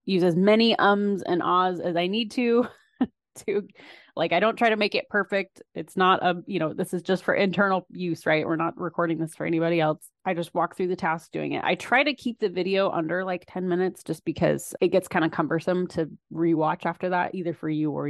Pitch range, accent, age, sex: 160-200 Hz, American, 20-39, female